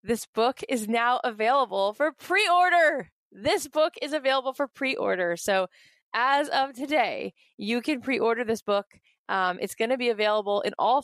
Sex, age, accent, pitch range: female, 20-39, American, 210-255 Hz